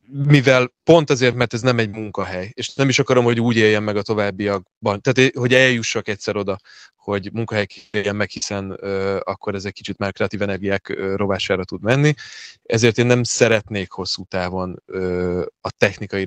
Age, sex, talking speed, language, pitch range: 20-39, male, 175 wpm, Hungarian, 95-120 Hz